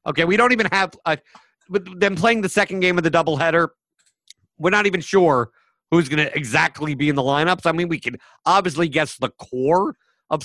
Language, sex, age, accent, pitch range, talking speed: English, male, 50-69, American, 140-180 Hz, 195 wpm